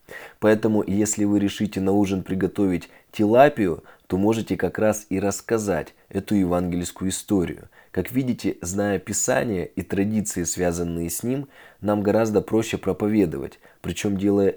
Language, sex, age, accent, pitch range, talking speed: Russian, male, 20-39, native, 95-110 Hz, 130 wpm